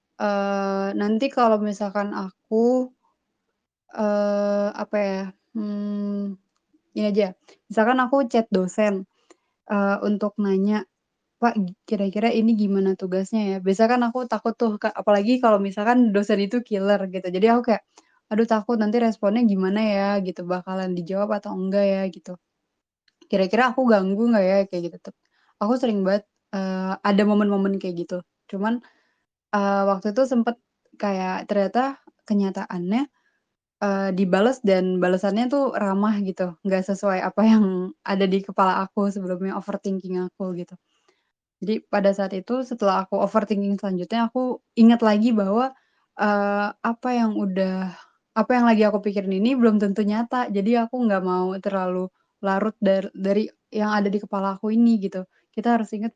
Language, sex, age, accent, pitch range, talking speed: Indonesian, female, 20-39, native, 195-225 Hz, 145 wpm